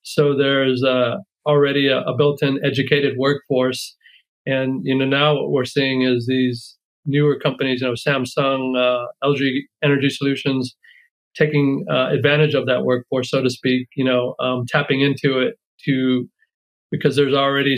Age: 40-59